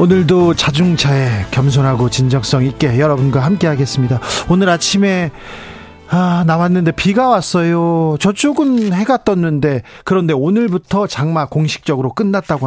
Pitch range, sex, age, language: 140-190 Hz, male, 40-59, Korean